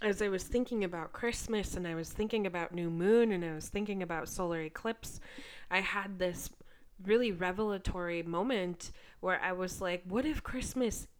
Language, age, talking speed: English, 20-39, 175 wpm